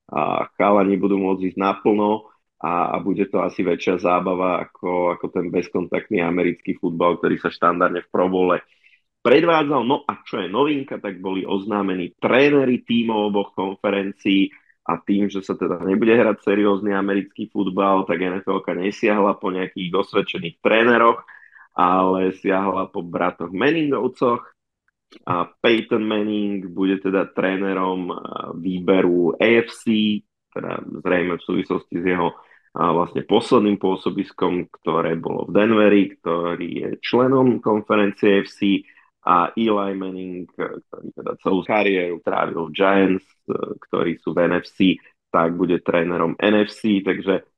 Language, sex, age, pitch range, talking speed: Slovak, male, 30-49, 95-105 Hz, 130 wpm